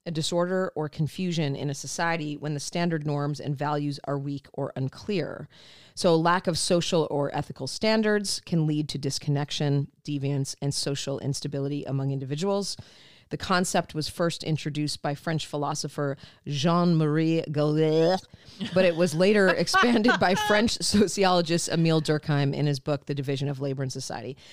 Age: 40-59